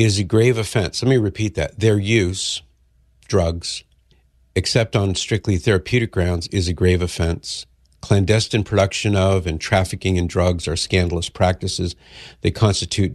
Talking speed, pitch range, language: 145 wpm, 90-105 Hz, English